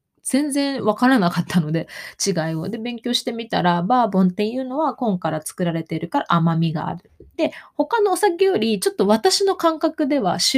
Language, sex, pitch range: Japanese, female, 170-265 Hz